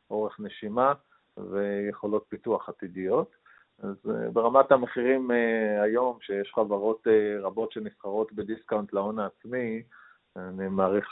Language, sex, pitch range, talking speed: Hebrew, male, 95-110 Hz, 95 wpm